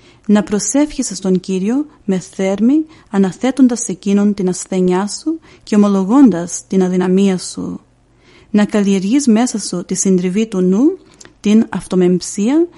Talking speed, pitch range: 120 wpm, 185-235 Hz